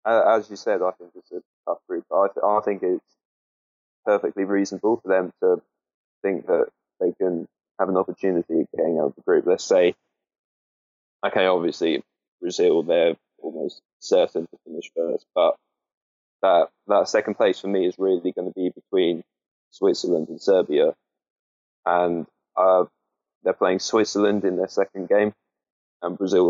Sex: male